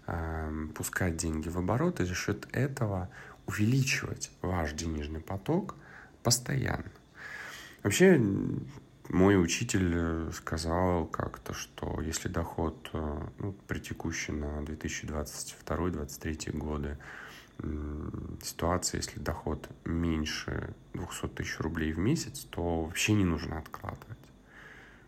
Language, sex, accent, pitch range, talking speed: Russian, male, native, 75-100 Hz, 95 wpm